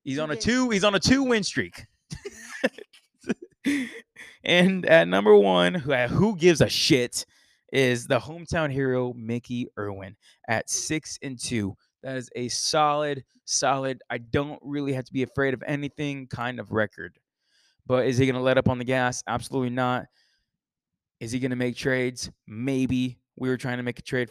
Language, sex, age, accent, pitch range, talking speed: English, male, 20-39, American, 115-140 Hz, 165 wpm